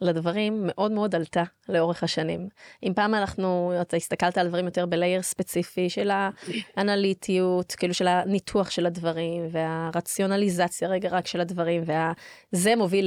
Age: 20-39